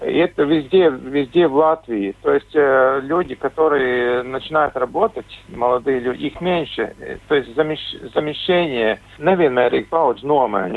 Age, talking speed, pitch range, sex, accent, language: 50-69, 135 wpm, 130-160 Hz, male, native, Russian